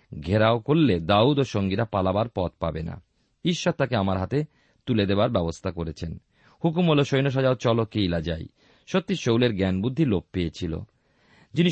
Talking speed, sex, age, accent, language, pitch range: 155 wpm, male, 40-59, native, Bengali, 100-145 Hz